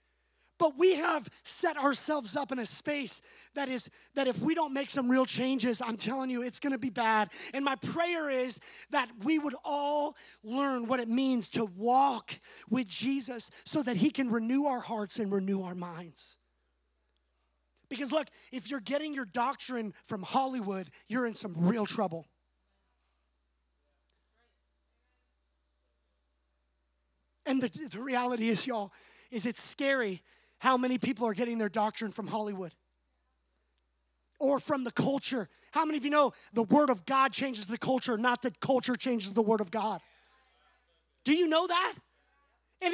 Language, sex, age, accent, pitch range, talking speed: English, male, 30-49, American, 185-285 Hz, 160 wpm